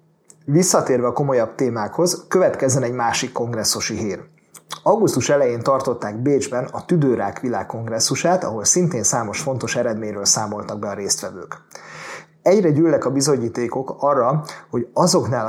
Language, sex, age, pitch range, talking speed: Hungarian, male, 30-49, 120-145 Hz, 125 wpm